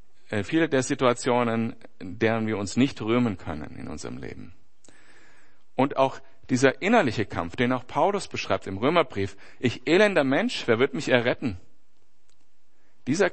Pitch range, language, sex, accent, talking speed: 95-130 Hz, German, male, German, 140 wpm